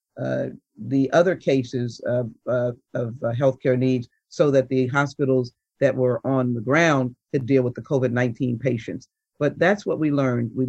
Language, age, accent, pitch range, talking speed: English, 50-69, American, 130-150 Hz, 175 wpm